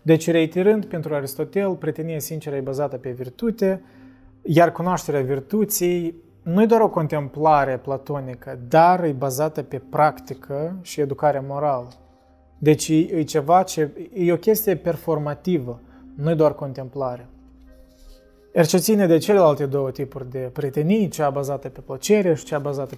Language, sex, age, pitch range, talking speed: Romanian, male, 20-39, 135-170 Hz, 140 wpm